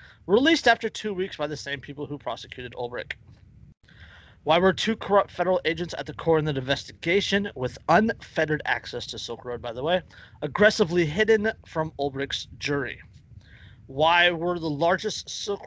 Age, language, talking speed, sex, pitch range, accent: 30-49, English, 160 wpm, male, 135-185 Hz, American